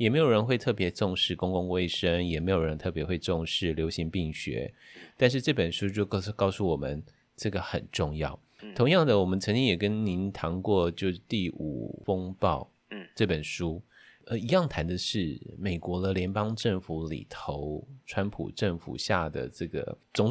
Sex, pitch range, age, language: male, 85-115 Hz, 30-49, Chinese